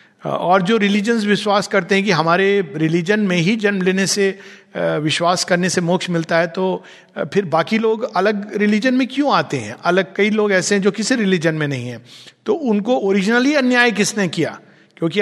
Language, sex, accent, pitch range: Hindi, male, native, 150-205 Hz